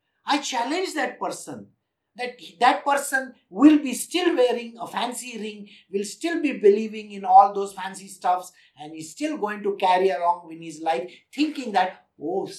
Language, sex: English, male